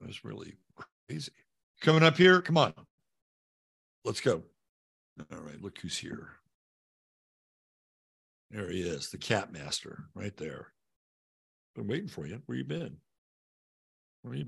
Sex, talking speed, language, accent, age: male, 135 wpm, English, American, 60-79